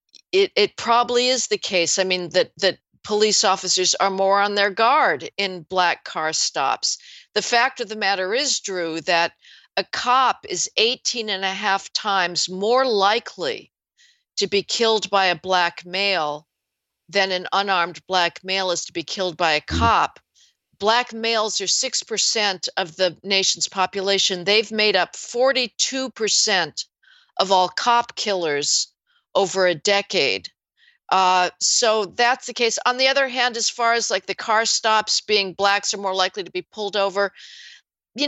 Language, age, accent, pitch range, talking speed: English, 50-69, American, 190-250 Hz, 160 wpm